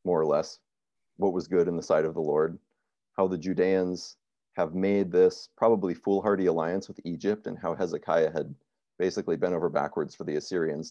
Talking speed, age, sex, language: 185 wpm, 40-59, male, English